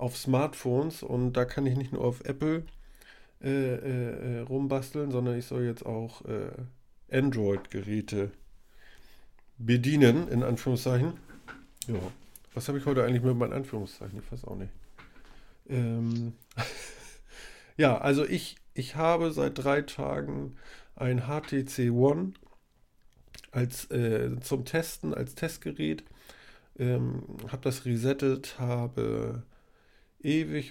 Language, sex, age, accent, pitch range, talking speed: German, male, 50-69, German, 115-135 Hz, 115 wpm